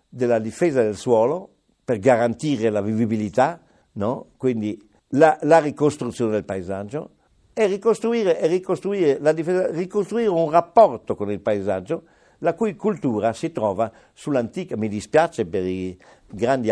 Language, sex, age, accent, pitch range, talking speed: Italian, male, 60-79, native, 100-135 Hz, 135 wpm